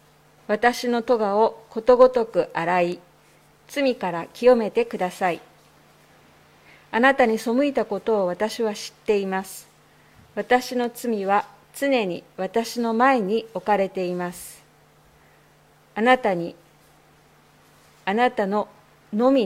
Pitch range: 185-240 Hz